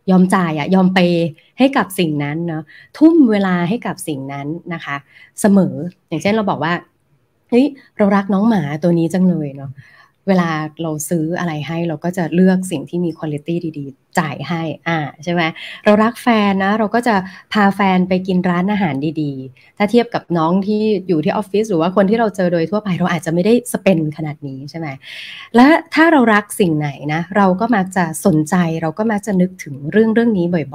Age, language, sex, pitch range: 20-39, Thai, female, 160-210 Hz